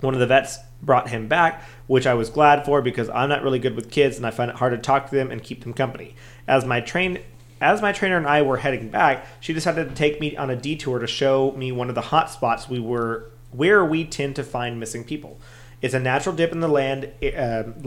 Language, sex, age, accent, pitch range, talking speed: English, male, 30-49, American, 120-145 Hz, 255 wpm